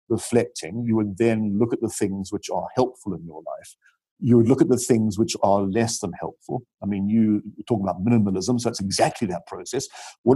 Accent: British